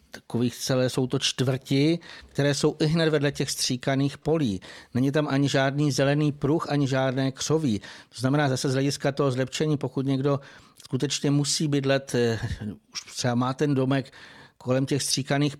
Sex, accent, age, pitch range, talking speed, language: male, native, 50-69, 125-140 Hz, 160 wpm, Czech